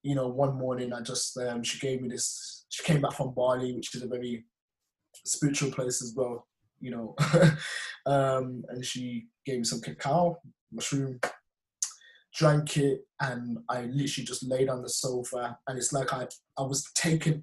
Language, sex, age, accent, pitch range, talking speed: English, male, 20-39, British, 130-155 Hz, 175 wpm